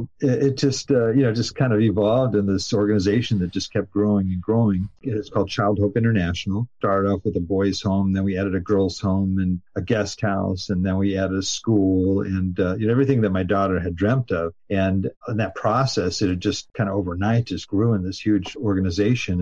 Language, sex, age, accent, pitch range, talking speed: English, male, 50-69, American, 90-105 Hz, 225 wpm